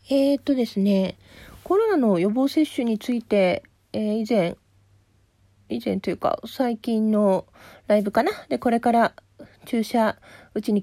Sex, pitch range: female, 195-255 Hz